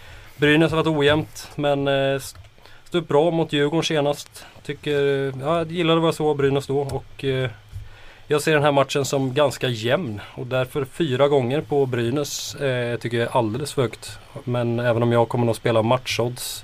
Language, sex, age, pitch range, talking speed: Swedish, male, 20-39, 115-140 Hz, 175 wpm